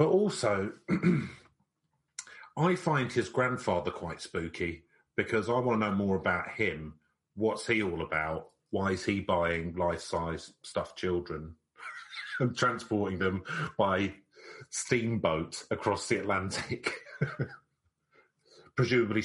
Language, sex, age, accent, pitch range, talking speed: English, male, 40-59, British, 90-120 Hz, 110 wpm